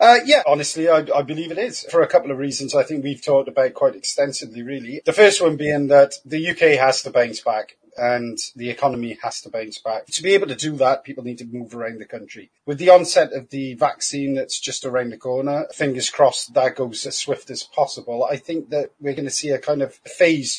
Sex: male